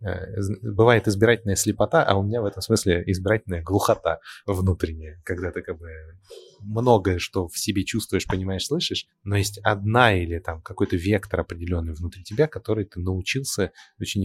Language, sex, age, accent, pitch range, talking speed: Russian, male, 20-39, native, 90-105 Hz, 155 wpm